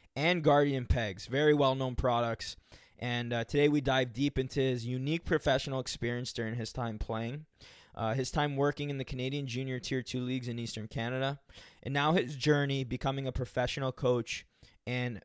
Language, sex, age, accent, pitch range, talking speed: English, male, 20-39, American, 115-140 Hz, 175 wpm